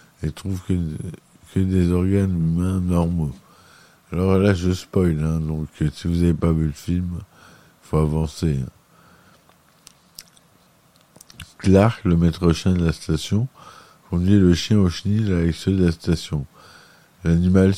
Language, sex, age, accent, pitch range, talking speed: French, male, 50-69, French, 80-95 Hz, 145 wpm